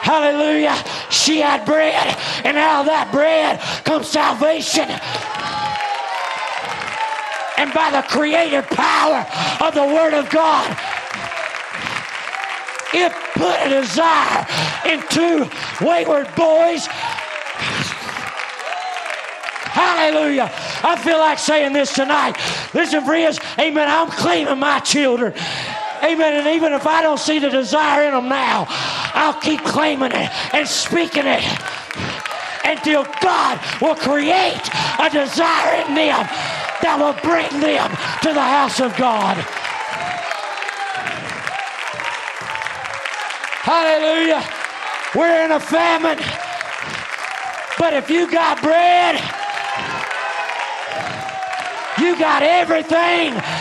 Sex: male